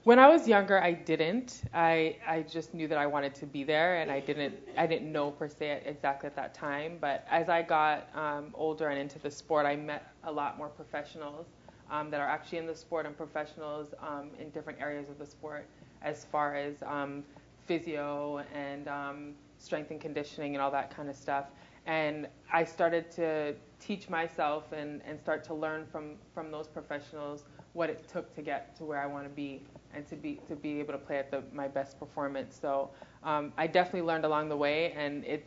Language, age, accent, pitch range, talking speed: English, 20-39, American, 145-160 Hz, 210 wpm